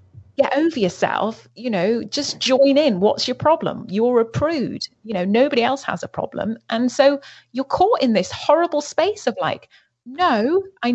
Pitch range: 190-280 Hz